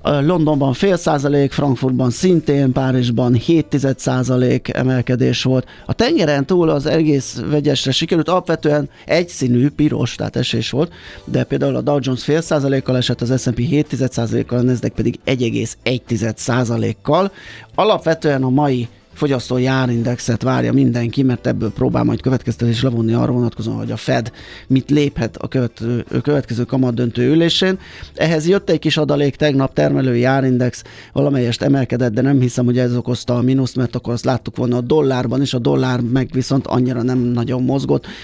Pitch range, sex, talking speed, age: 120-140 Hz, male, 155 wpm, 30-49